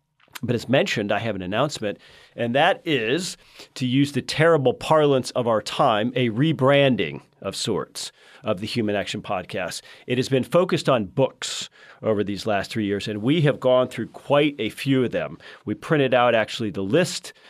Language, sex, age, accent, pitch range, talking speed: English, male, 40-59, American, 105-130 Hz, 185 wpm